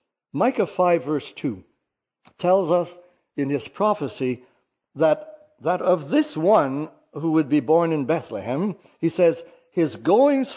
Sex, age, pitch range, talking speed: male, 60-79, 135-180 Hz, 135 wpm